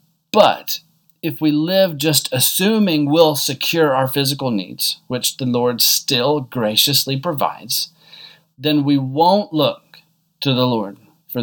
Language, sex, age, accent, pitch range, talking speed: English, male, 40-59, American, 130-165 Hz, 130 wpm